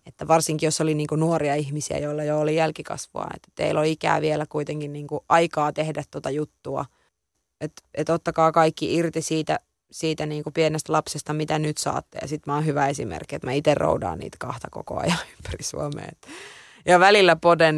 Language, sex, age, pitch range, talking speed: Finnish, female, 20-39, 150-165 Hz, 175 wpm